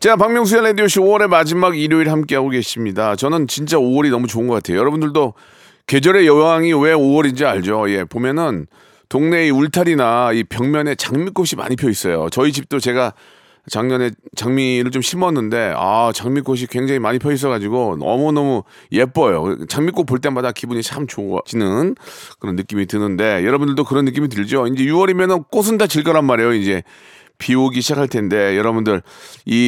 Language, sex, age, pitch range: Korean, male, 40-59, 120-150 Hz